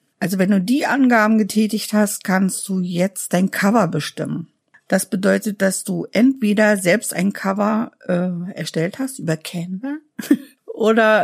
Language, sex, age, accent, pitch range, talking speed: German, female, 50-69, German, 185-235 Hz, 145 wpm